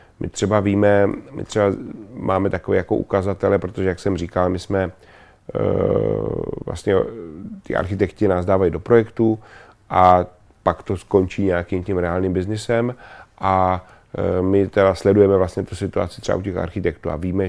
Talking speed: 150 wpm